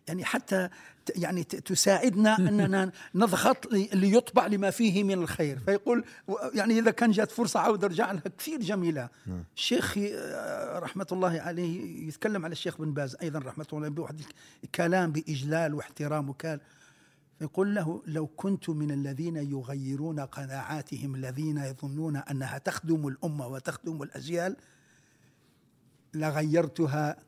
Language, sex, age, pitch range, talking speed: Arabic, male, 60-79, 145-190 Hz, 120 wpm